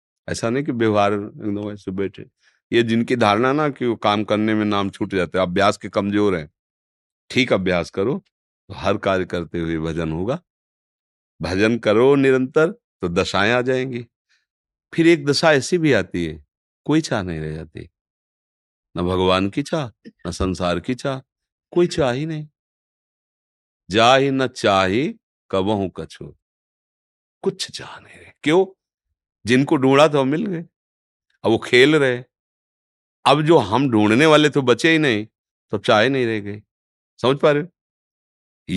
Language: Hindi